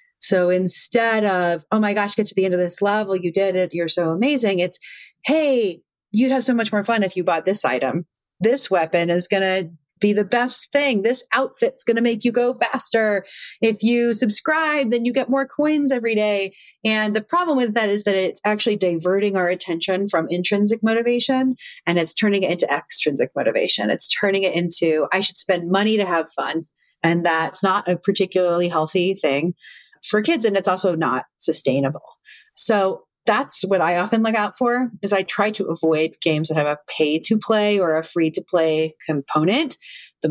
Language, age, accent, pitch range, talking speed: English, 30-49, American, 175-230 Hz, 200 wpm